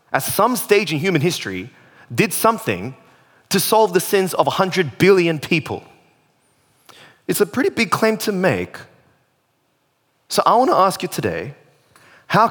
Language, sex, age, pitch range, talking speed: English, male, 20-39, 150-205 Hz, 145 wpm